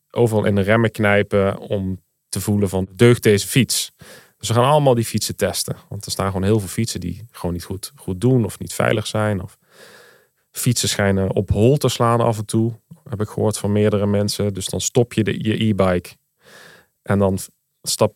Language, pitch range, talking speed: Dutch, 100-120 Hz, 205 wpm